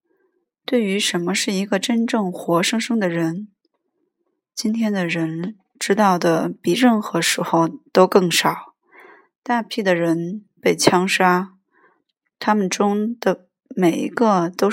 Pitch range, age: 175-230 Hz, 20-39